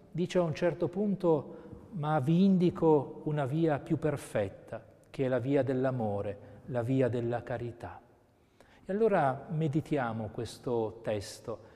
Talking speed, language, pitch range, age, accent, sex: 135 wpm, Italian, 115-155 Hz, 40-59, native, male